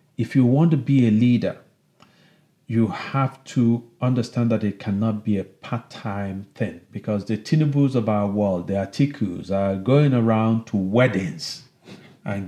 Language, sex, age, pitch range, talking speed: English, male, 40-59, 105-135 Hz, 155 wpm